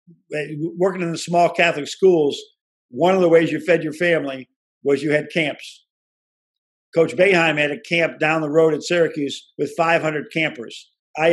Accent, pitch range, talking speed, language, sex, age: American, 150-180 Hz, 170 wpm, English, male, 50-69